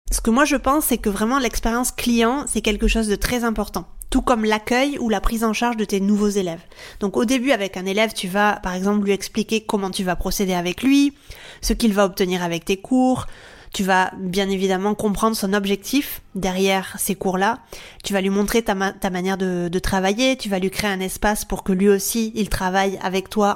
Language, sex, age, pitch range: French, female, 20-39, 190-225 Hz